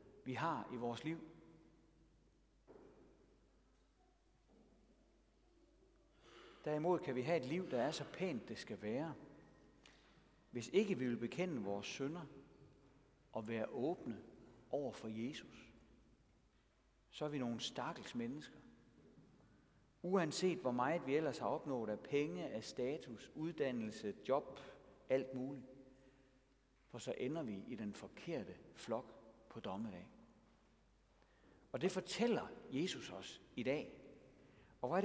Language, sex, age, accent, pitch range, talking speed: Danish, male, 60-79, native, 120-170 Hz, 125 wpm